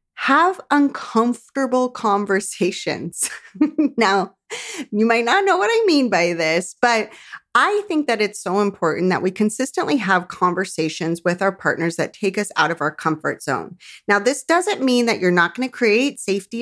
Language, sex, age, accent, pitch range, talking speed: English, female, 30-49, American, 185-245 Hz, 170 wpm